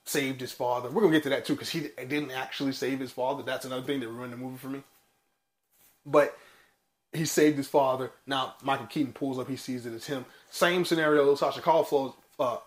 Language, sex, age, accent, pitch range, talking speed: English, male, 20-39, American, 130-165 Hz, 225 wpm